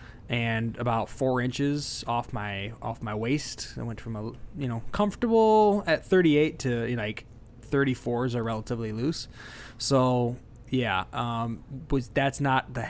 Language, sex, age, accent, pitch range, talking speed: English, male, 20-39, American, 115-135 Hz, 155 wpm